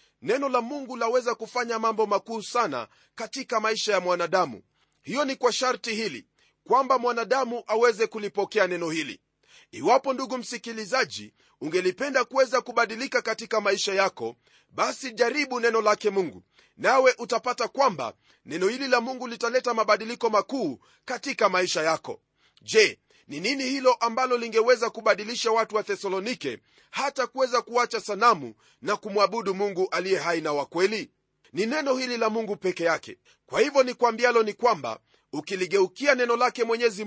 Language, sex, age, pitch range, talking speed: Swahili, male, 40-59, 205-255 Hz, 140 wpm